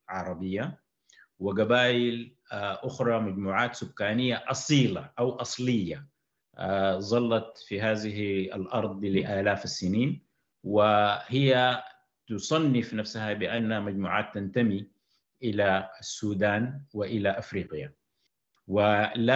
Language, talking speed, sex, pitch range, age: Arabic, 75 wpm, male, 100-120 Hz, 50-69